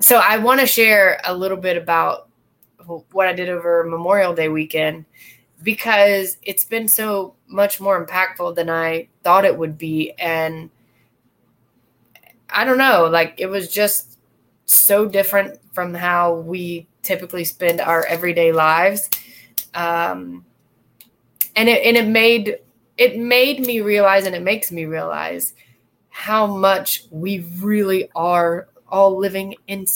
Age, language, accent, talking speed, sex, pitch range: 20-39, English, American, 140 wpm, female, 165-205 Hz